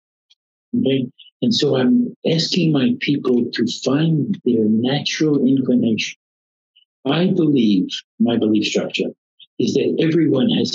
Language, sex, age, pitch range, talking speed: English, male, 60-79, 110-145 Hz, 110 wpm